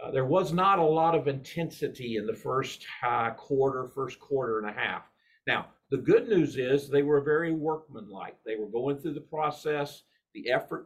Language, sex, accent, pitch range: English, male, American, 130-170 Hz